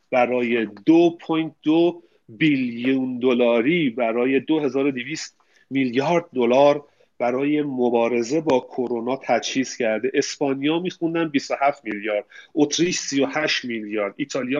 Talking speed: 90 wpm